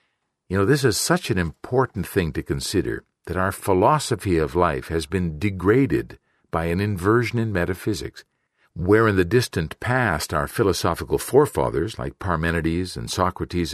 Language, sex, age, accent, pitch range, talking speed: English, male, 50-69, American, 85-105 Hz, 155 wpm